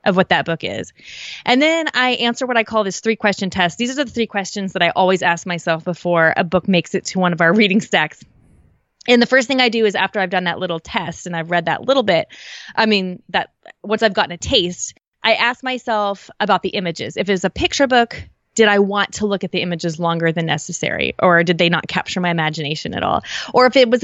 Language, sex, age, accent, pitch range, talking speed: English, female, 20-39, American, 175-230 Hz, 245 wpm